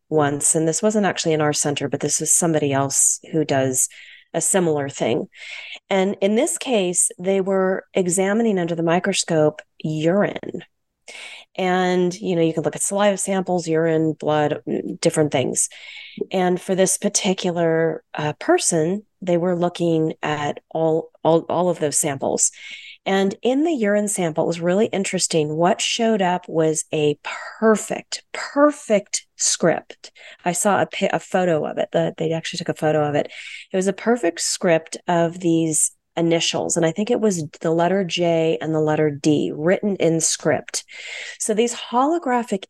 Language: English